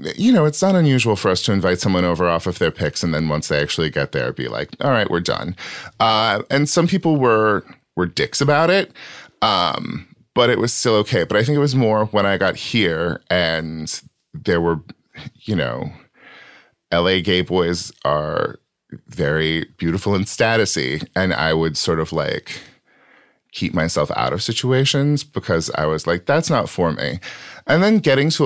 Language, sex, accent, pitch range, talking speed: English, male, American, 85-125 Hz, 190 wpm